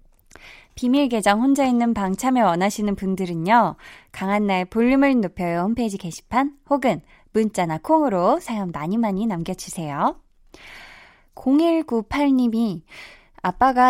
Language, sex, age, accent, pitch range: Korean, female, 20-39, native, 175-255 Hz